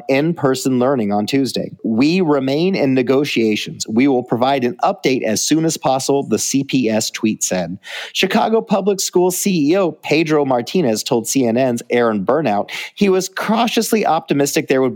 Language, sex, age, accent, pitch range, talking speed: English, male, 40-59, American, 120-165 Hz, 150 wpm